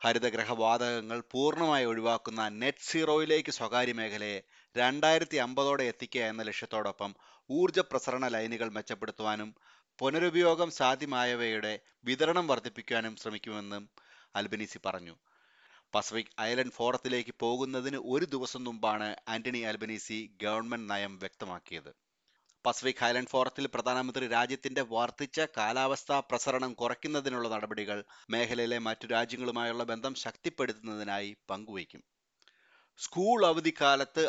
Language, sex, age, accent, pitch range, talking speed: Malayalam, male, 30-49, native, 110-130 Hz, 90 wpm